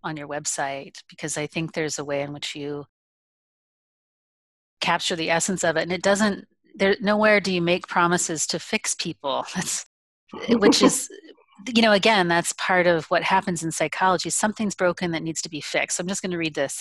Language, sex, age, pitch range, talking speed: English, female, 30-49, 155-185 Hz, 200 wpm